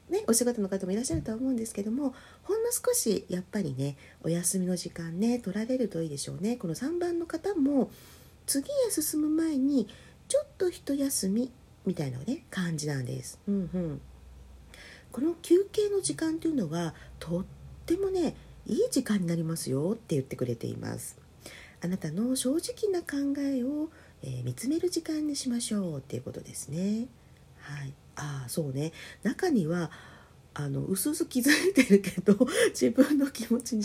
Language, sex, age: Japanese, female, 40-59